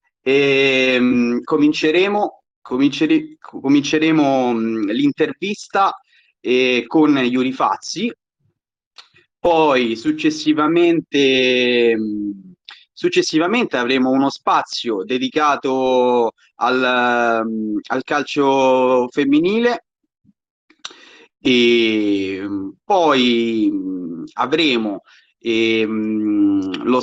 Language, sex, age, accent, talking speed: Italian, male, 30-49, native, 55 wpm